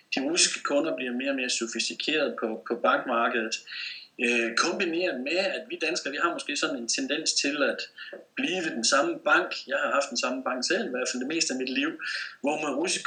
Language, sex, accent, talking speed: Danish, male, native, 210 wpm